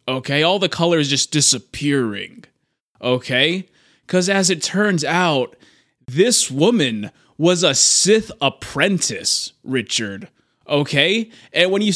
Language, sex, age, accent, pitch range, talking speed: English, male, 20-39, American, 145-210 Hz, 115 wpm